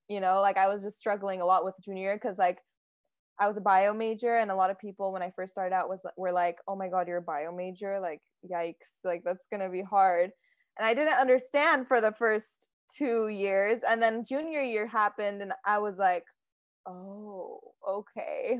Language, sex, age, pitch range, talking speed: English, female, 10-29, 190-230 Hz, 215 wpm